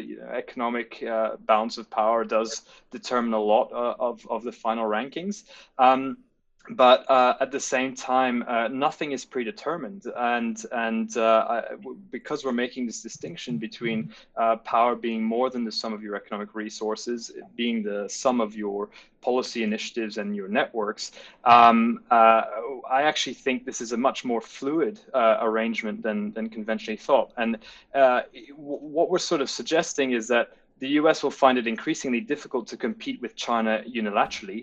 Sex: male